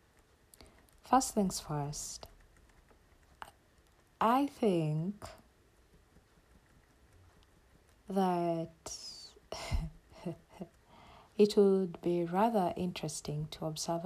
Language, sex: English, female